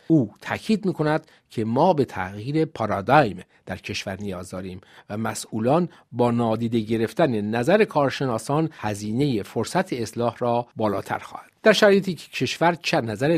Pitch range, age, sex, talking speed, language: 105-155 Hz, 50-69, male, 140 wpm, Persian